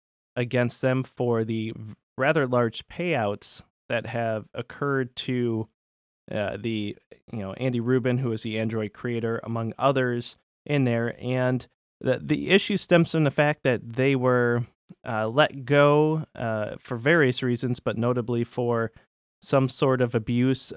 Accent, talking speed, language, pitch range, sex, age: American, 145 wpm, English, 115-140 Hz, male, 30-49